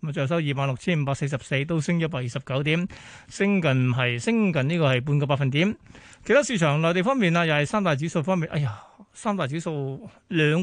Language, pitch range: Chinese, 145-185 Hz